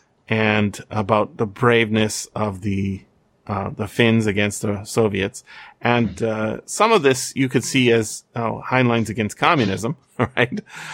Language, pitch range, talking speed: English, 110-130 Hz, 145 wpm